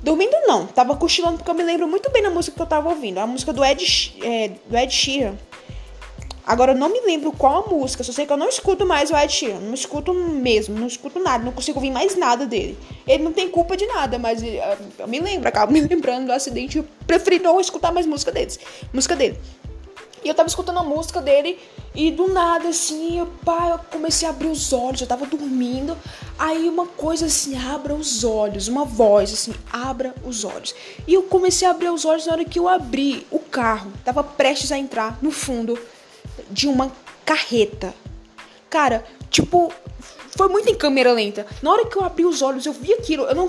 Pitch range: 260-345 Hz